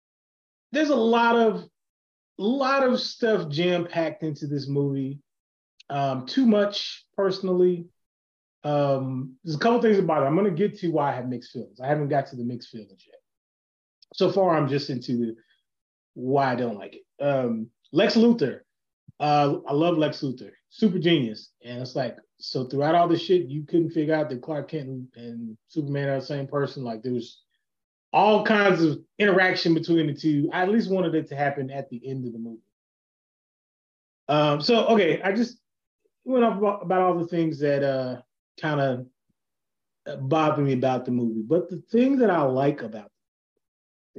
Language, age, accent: English, 30-49, American